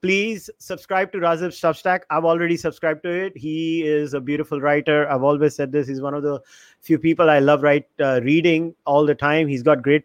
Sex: male